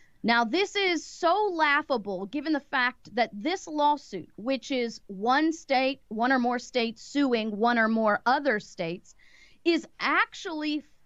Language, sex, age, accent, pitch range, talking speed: English, female, 40-59, American, 215-280 Hz, 145 wpm